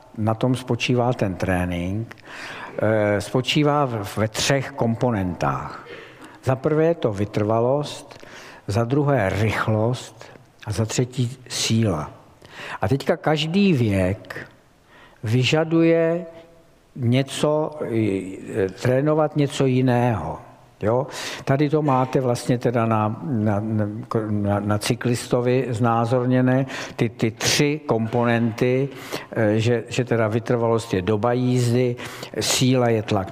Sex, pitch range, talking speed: male, 105-130 Hz, 95 wpm